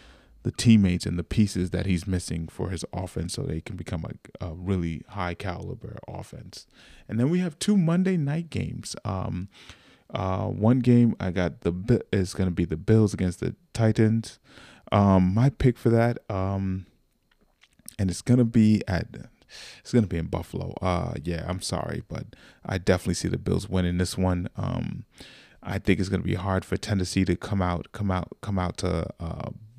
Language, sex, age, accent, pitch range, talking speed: English, male, 30-49, American, 90-115 Hz, 190 wpm